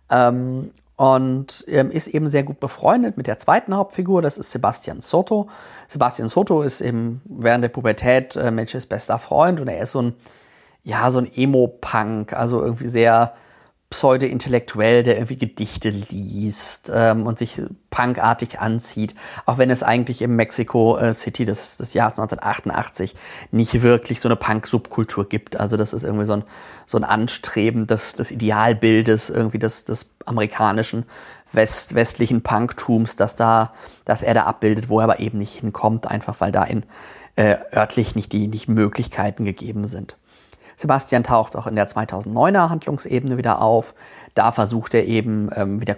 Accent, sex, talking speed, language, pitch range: German, male, 160 wpm, German, 110-125 Hz